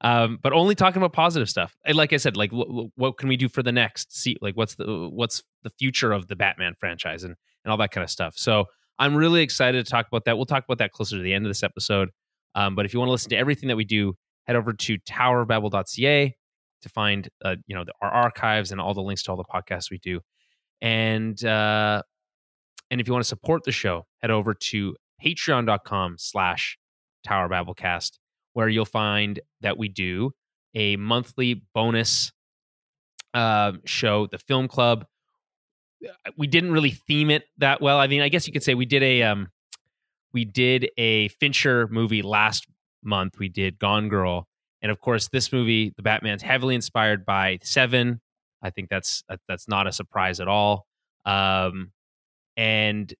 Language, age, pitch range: English, 20-39, 100-130 Hz